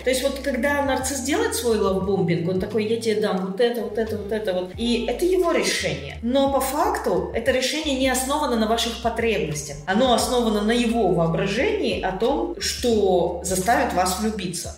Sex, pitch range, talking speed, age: female, 190-260 Hz, 185 wpm, 30-49